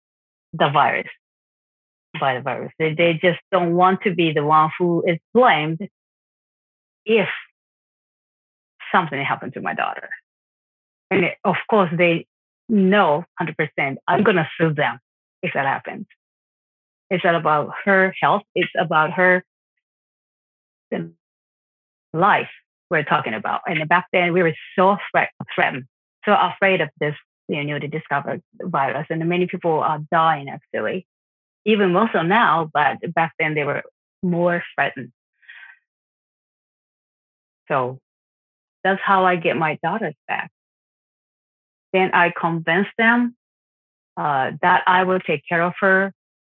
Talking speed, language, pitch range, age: 135 wpm, English, 155-185 Hz, 30-49